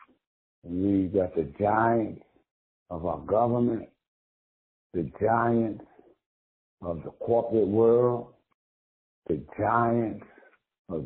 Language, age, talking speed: English, 60-79, 85 wpm